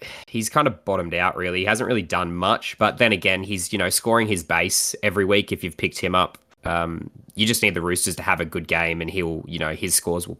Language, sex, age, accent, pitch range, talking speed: English, male, 20-39, Australian, 90-110 Hz, 260 wpm